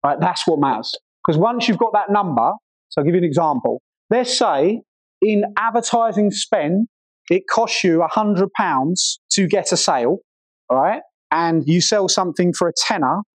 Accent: British